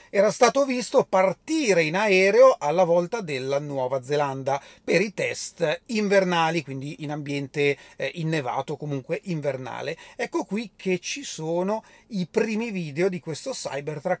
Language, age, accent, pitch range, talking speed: Italian, 30-49, native, 150-225 Hz, 135 wpm